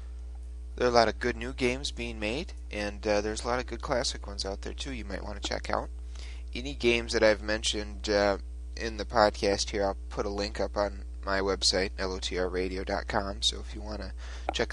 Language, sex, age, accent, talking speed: English, male, 30-49, American, 215 wpm